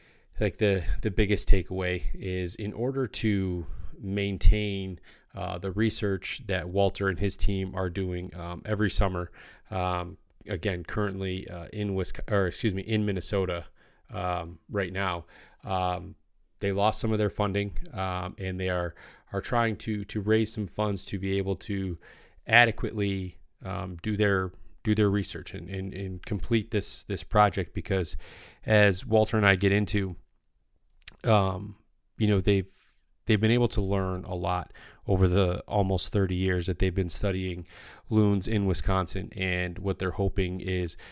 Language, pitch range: English, 90-105 Hz